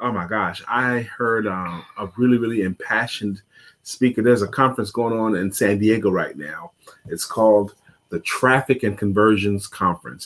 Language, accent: English, American